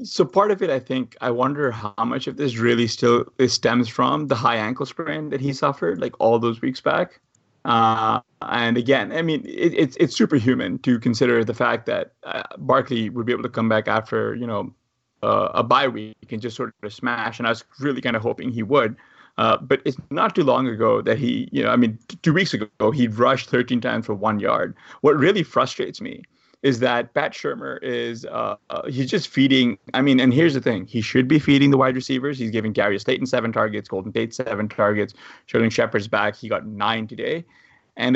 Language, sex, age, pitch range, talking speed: English, male, 30-49, 115-135 Hz, 220 wpm